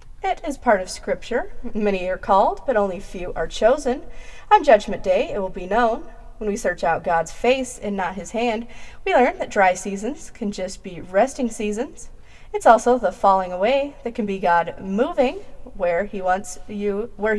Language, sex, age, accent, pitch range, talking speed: English, female, 30-49, American, 190-260 Hz, 190 wpm